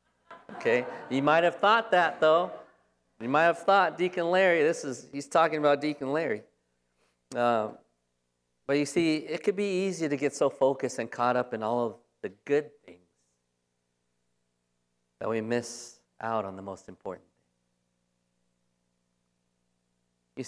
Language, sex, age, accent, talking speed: English, male, 40-59, American, 145 wpm